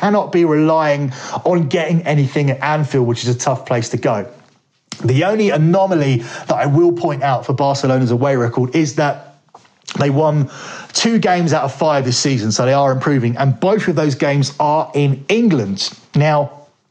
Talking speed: 180 wpm